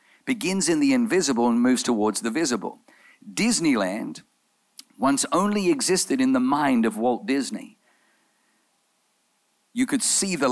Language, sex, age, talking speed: English, male, 50-69, 130 wpm